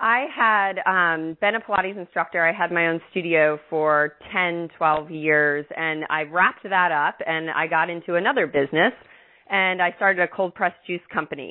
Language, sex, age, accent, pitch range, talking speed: English, female, 30-49, American, 160-195 Hz, 185 wpm